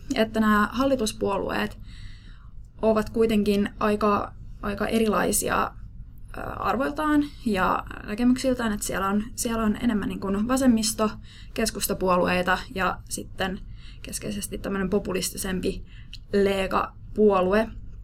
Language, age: Finnish, 20-39